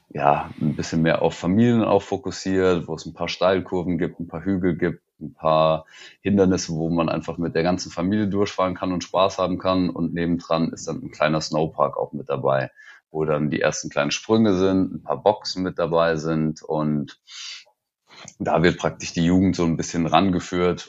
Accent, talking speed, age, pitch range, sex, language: German, 190 wpm, 30-49, 80-90 Hz, male, German